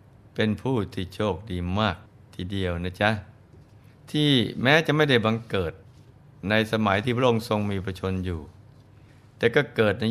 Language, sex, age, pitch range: Thai, male, 20-39, 100-120 Hz